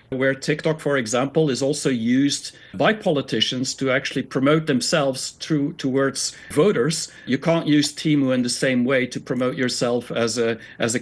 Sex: male